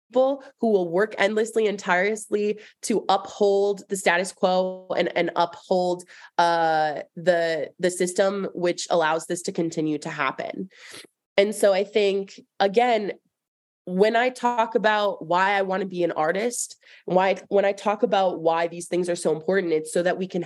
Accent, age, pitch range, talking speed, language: American, 20-39, 165-200 Hz, 165 wpm, English